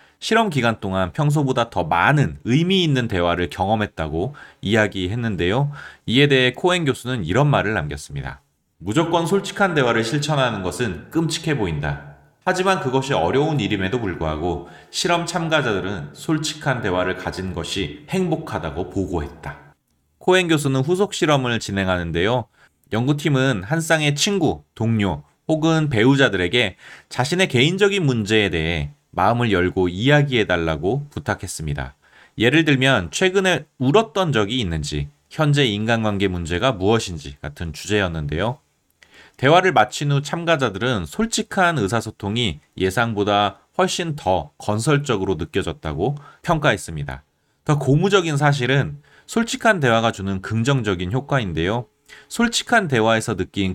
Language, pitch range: Korean, 90-150 Hz